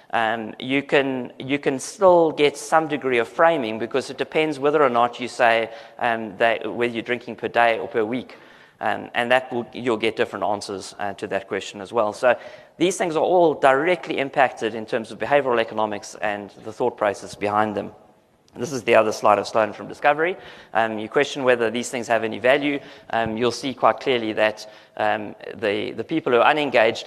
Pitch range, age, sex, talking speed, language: 110-135 Hz, 30-49, male, 205 wpm, English